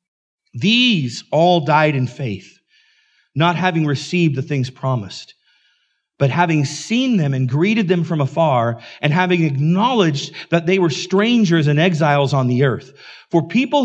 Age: 40-59